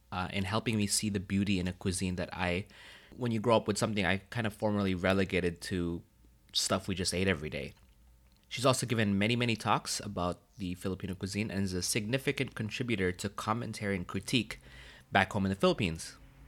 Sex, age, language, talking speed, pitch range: male, 20-39, English, 195 wpm, 85-110 Hz